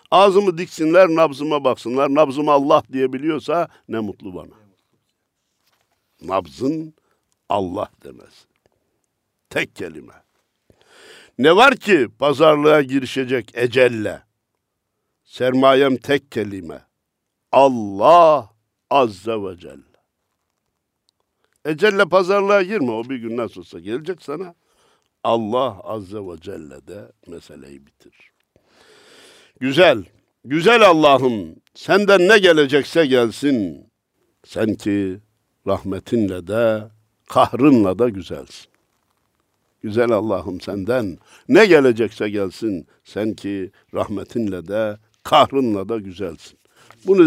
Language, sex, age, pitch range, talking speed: Turkish, male, 60-79, 105-155 Hz, 95 wpm